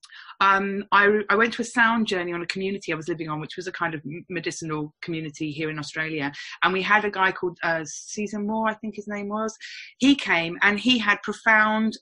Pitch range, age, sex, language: 155-200 Hz, 30-49, female, English